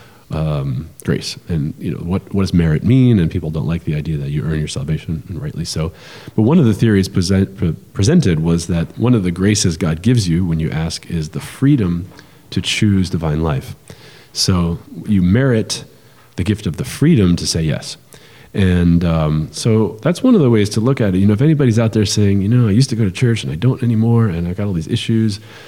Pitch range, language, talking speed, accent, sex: 85-115 Hz, English, 230 wpm, American, male